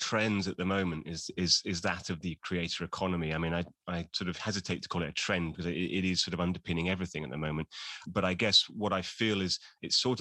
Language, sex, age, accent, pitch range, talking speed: English, male, 30-49, British, 85-100 Hz, 260 wpm